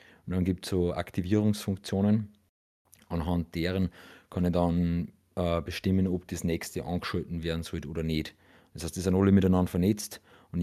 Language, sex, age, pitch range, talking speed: English, male, 40-59, 80-95 Hz, 165 wpm